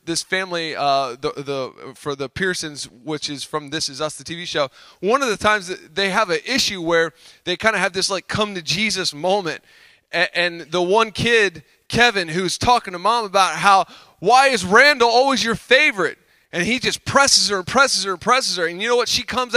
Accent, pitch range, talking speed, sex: American, 175-235 Hz, 215 wpm, male